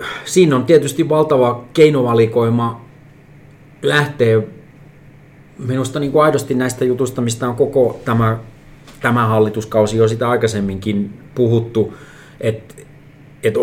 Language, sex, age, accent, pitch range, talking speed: Finnish, male, 30-49, native, 105-130 Hz, 95 wpm